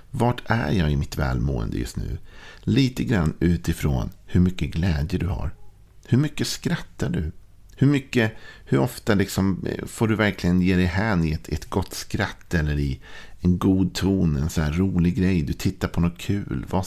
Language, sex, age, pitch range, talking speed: Swedish, male, 50-69, 85-100 Hz, 180 wpm